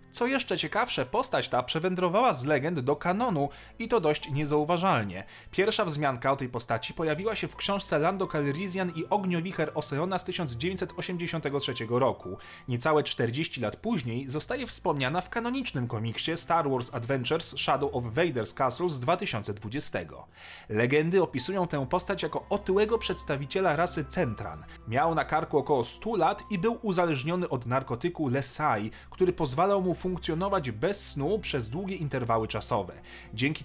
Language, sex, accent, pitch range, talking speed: Polish, male, native, 125-185 Hz, 145 wpm